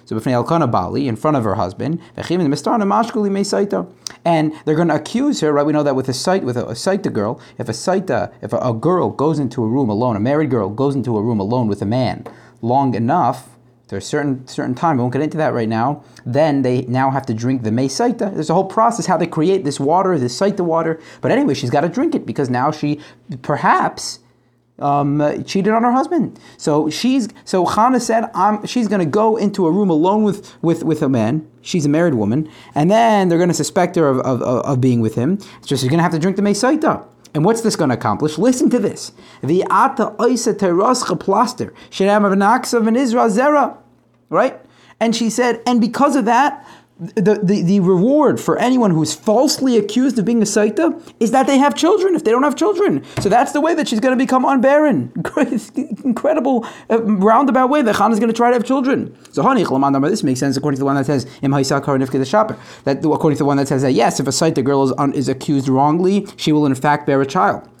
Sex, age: male, 30-49